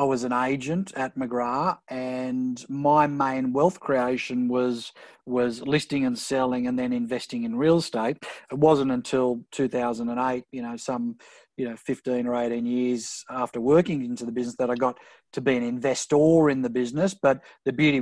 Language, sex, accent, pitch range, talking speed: English, male, Australian, 125-145 Hz, 175 wpm